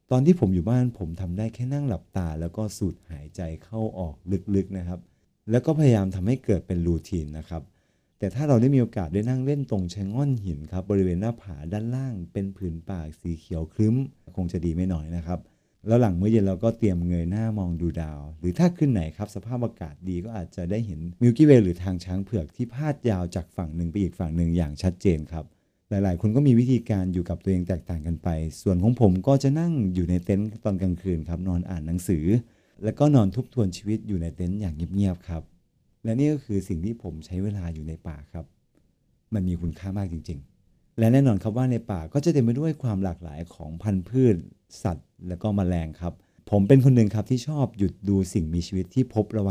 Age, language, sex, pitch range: 30-49, Thai, male, 85-115 Hz